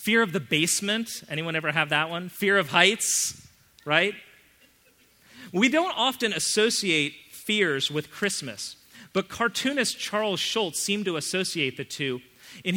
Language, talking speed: English, 140 wpm